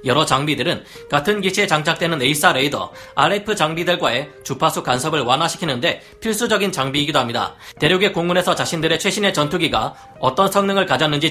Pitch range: 135-175 Hz